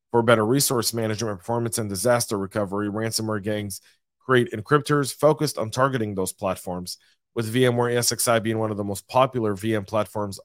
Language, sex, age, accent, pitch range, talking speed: English, male, 30-49, American, 105-120 Hz, 160 wpm